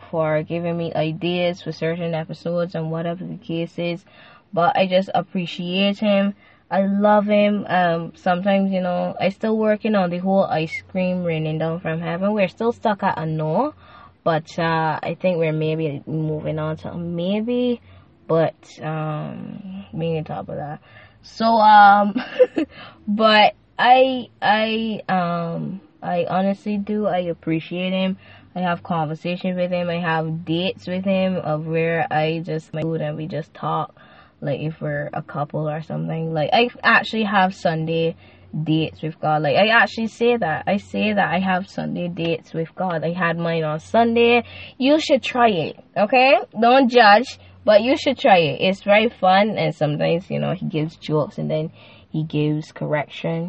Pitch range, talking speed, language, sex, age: 160-205 Hz, 175 wpm, French, female, 10-29